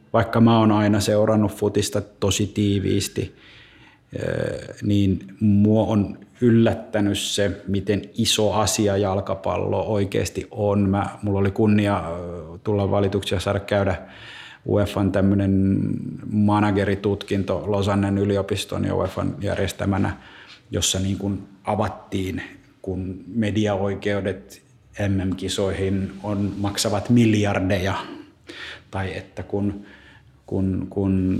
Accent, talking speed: native, 95 wpm